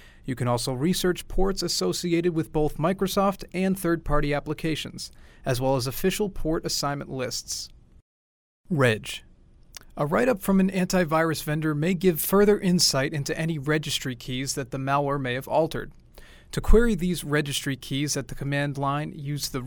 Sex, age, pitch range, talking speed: male, 40-59, 135-175 Hz, 155 wpm